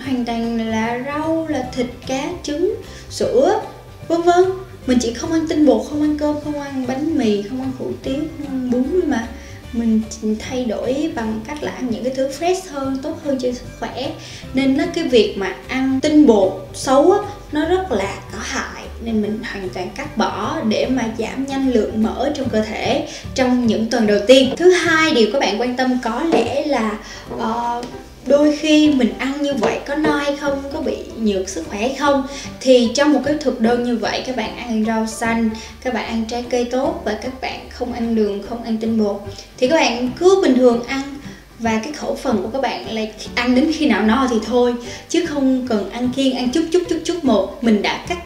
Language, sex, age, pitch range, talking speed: Vietnamese, female, 10-29, 230-285 Hz, 220 wpm